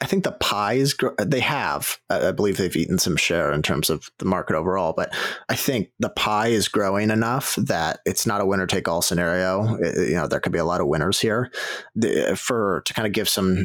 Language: English